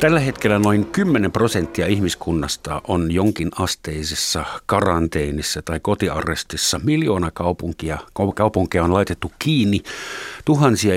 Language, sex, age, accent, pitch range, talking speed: Finnish, male, 50-69, native, 80-105 Hz, 105 wpm